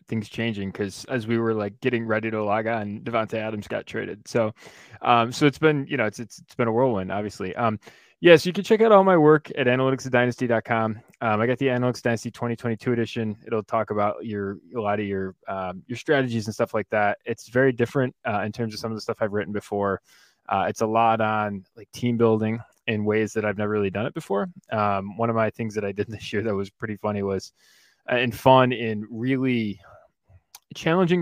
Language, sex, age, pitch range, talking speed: English, male, 20-39, 100-120 Hz, 230 wpm